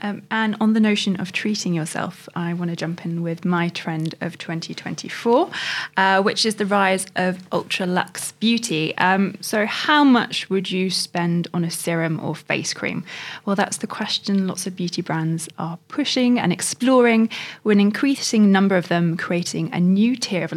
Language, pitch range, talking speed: English, 175-210 Hz, 180 wpm